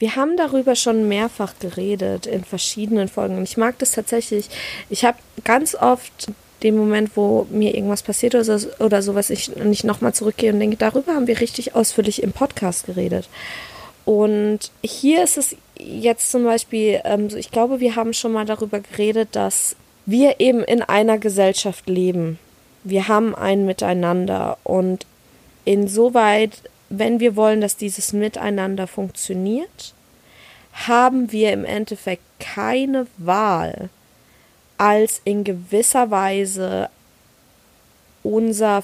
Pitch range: 200-235 Hz